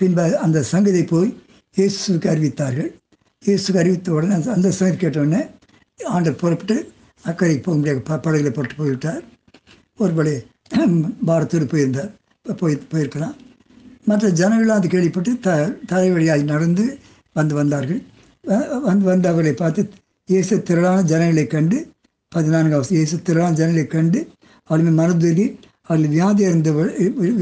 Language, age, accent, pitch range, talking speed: Tamil, 60-79, native, 160-200 Hz, 115 wpm